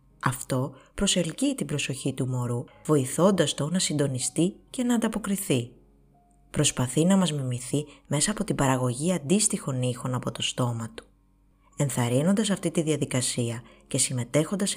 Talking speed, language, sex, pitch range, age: 135 wpm, Greek, female, 130-185 Hz, 20-39